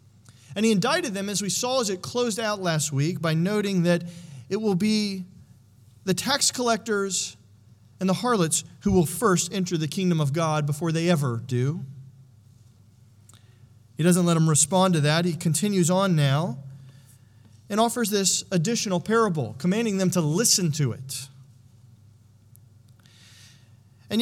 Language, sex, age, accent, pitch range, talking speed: English, male, 40-59, American, 130-190 Hz, 150 wpm